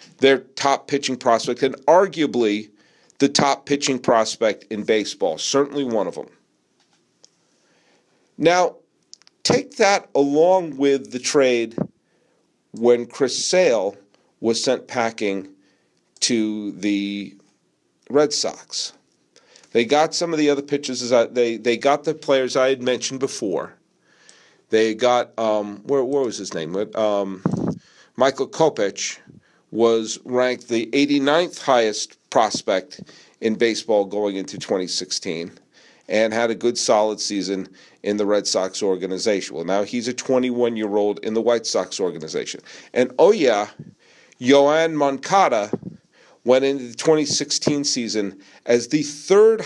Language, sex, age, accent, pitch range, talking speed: English, male, 50-69, American, 105-140 Hz, 125 wpm